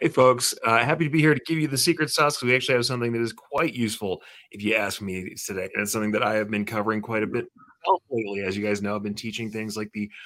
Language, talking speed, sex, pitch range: English, 285 wpm, male, 110-170 Hz